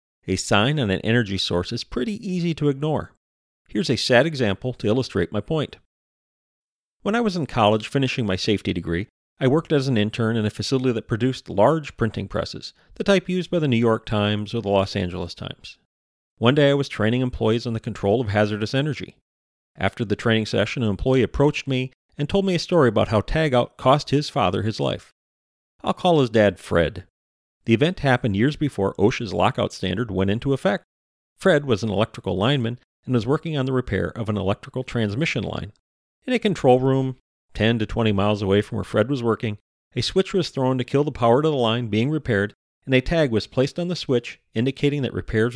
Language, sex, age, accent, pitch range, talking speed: English, male, 40-59, American, 100-135 Hz, 210 wpm